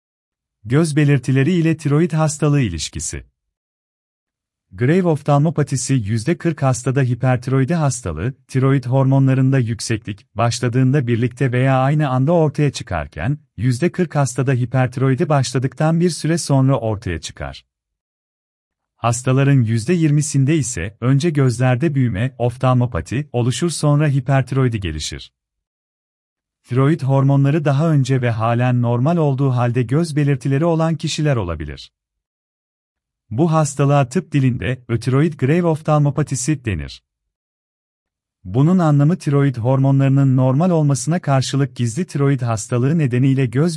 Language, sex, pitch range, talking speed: Turkish, male, 115-150 Hz, 105 wpm